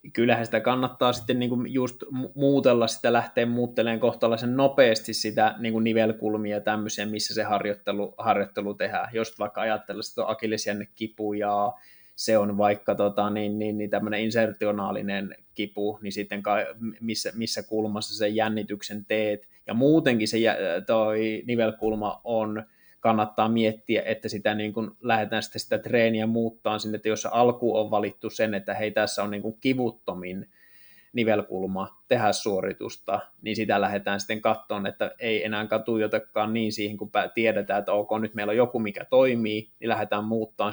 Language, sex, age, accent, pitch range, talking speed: Finnish, male, 20-39, native, 105-115 Hz, 150 wpm